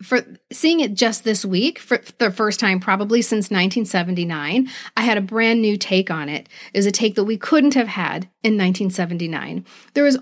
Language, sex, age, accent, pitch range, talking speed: English, female, 40-59, American, 190-255 Hz, 200 wpm